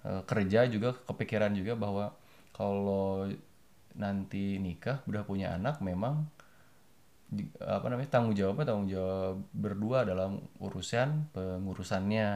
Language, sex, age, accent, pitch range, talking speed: Indonesian, male, 20-39, native, 90-110 Hz, 105 wpm